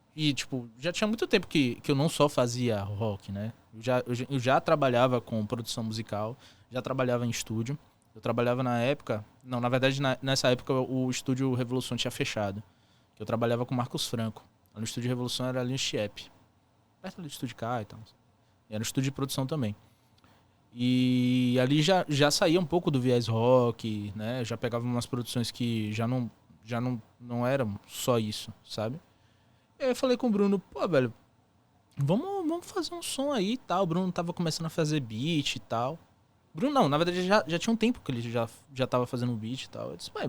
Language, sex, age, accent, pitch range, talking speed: English, male, 20-39, Brazilian, 115-165 Hz, 205 wpm